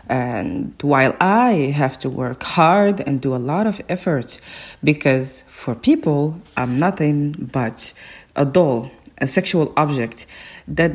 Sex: female